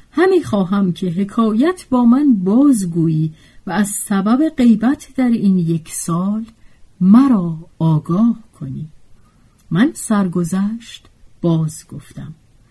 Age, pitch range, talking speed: 50-69, 170-240 Hz, 105 wpm